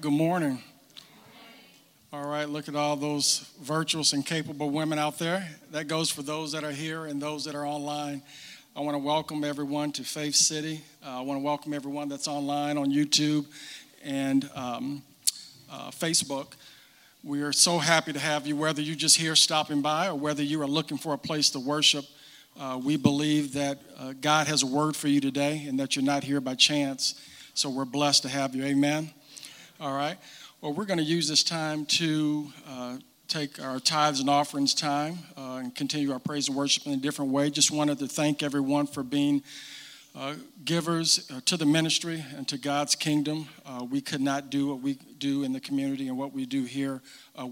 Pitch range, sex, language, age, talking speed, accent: 140-155 Hz, male, English, 50-69, 200 wpm, American